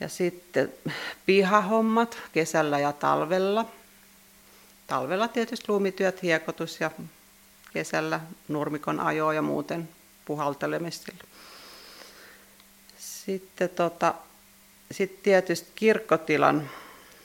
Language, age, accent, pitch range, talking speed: Finnish, 40-59, native, 155-185 Hz, 75 wpm